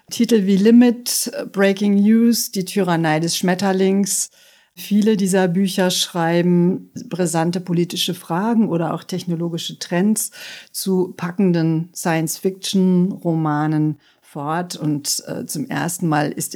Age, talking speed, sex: 50-69, 110 wpm, female